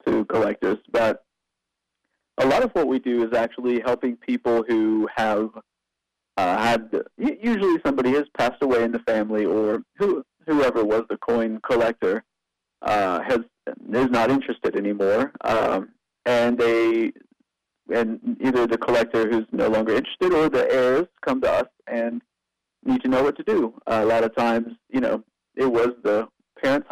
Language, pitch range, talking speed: English, 110-135 Hz, 165 wpm